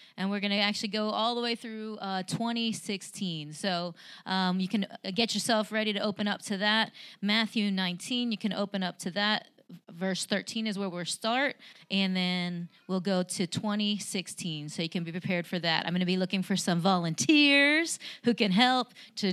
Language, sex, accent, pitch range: English, female, American, 185-225 Hz